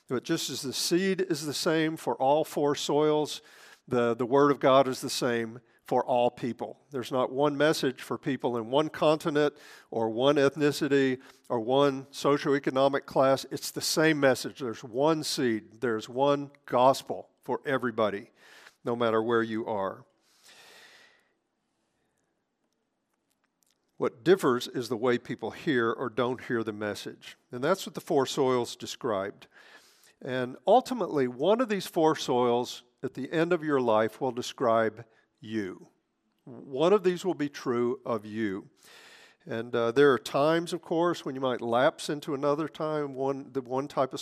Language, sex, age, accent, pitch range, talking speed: English, male, 50-69, American, 120-150 Hz, 160 wpm